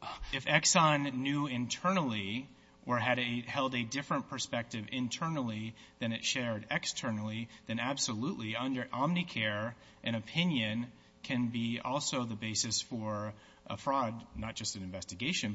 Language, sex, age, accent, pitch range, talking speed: English, male, 30-49, American, 110-135 Hz, 130 wpm